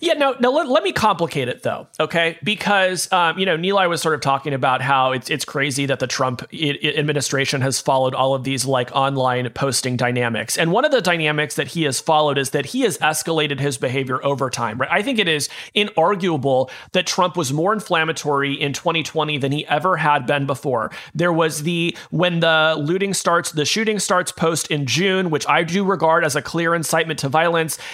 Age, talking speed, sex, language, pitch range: 30-49, 210 wpm, male, English, 145-185 Hz